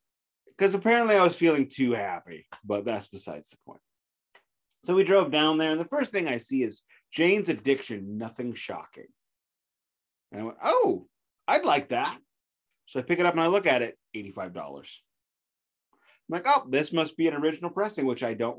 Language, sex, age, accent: English, male, 30-49, American